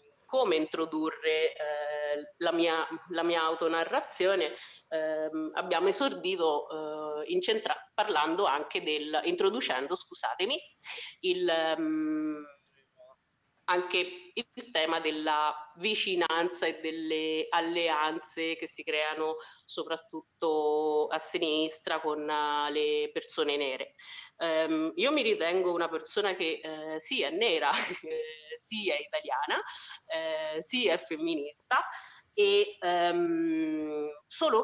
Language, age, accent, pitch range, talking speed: Italian, 30-49, native, 155-260 Hz, 105 wpm